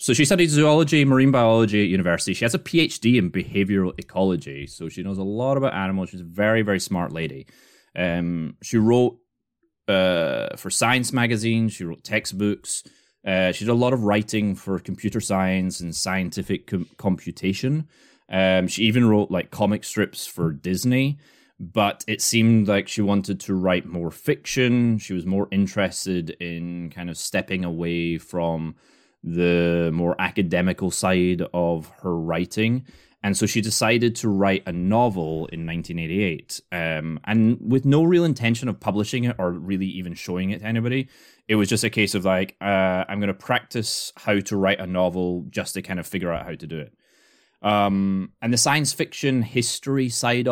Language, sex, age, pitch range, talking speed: English, male, 20-39, 90-115 Hz, 175 wpm